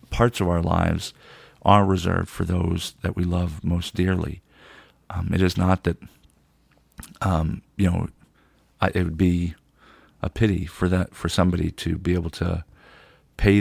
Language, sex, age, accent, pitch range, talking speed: English, male, 40-59, American, 85-95 Hz, 160 wpm